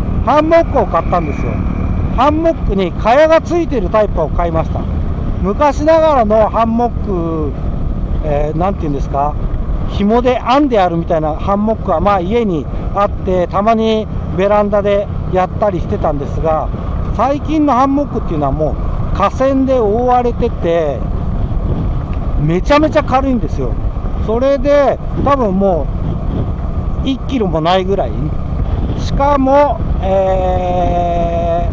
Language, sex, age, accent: Japanese, male, 60-79, native